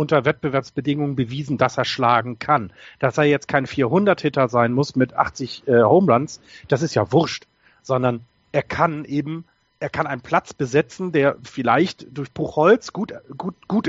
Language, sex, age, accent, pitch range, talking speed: German, male, 40-59, German, 125-160 Hz, 165 wpm